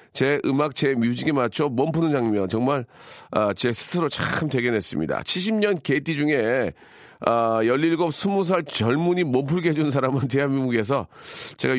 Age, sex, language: 40-59, male, Korean